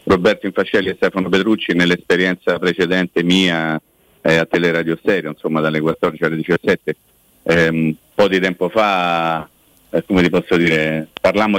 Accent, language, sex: native, Italian, male